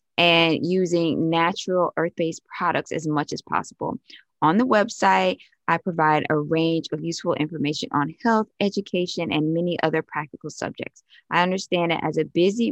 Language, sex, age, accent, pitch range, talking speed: English, female, 20-39, American, 155-205 Hz, 155 wpm